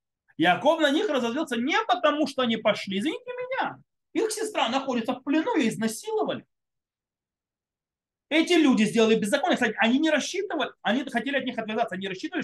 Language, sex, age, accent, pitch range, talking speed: Russian, male, 30-49, native, 200-300 Hz, 155 wpm